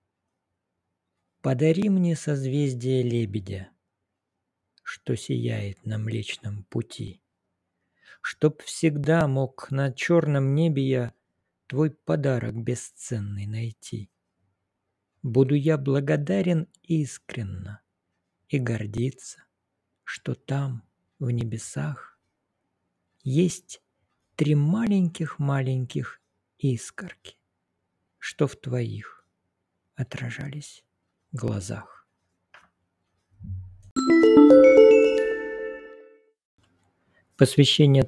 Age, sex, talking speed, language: 50-69, male, 60 wpm, Russian